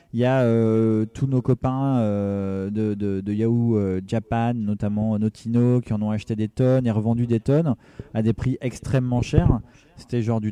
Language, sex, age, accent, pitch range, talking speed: French, male, 20-39, French, 110-130 Hz, 190 wpm